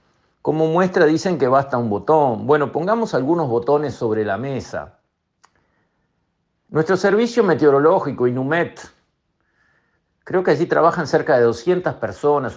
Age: 50-69